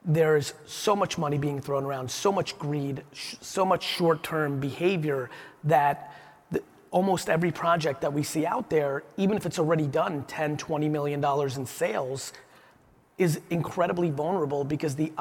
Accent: American